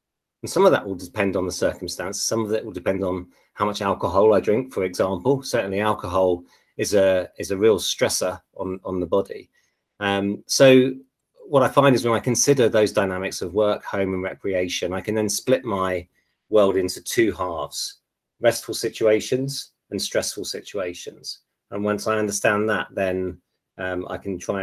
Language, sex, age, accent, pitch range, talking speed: English, male, 30-49, British, 90-110 Hz, 180 wpm